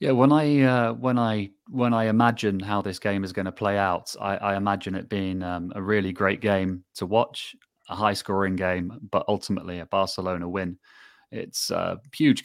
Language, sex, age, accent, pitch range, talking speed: English, male, 20-39, British, 95-110 Hz, 195 wpm